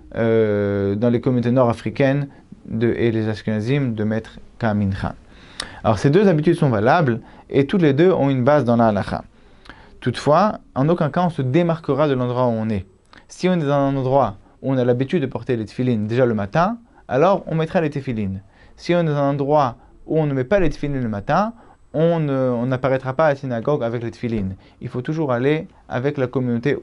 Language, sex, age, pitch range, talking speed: French, male, 30-49, 115-145 Hz, 210 wpm